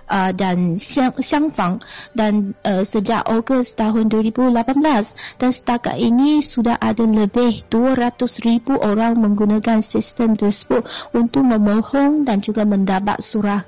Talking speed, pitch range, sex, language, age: 120 wpm, 205-240 Hz, female, Malay, 20-39